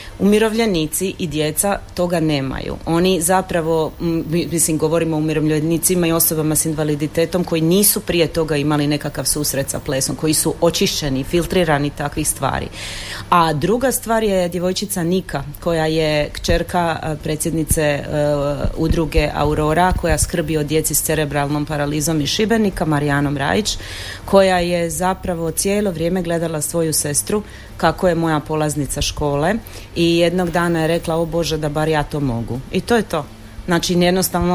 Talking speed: 150 wpm